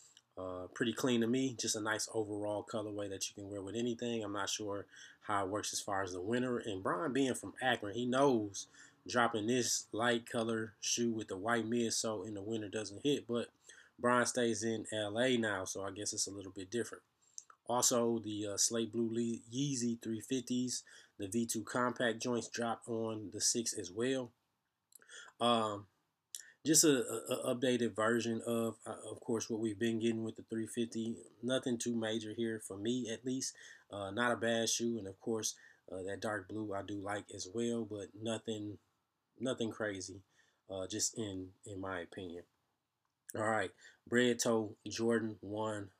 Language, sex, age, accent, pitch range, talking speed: English, male, 20-39, American, 105-120 Hz, 180 wpm